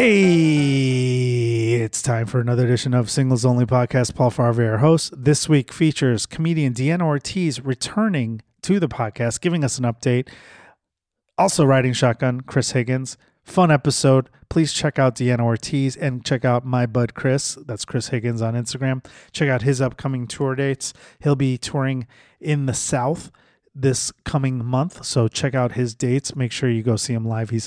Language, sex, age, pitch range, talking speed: English, male, 30-49, 125-150 Hz, 170 wpm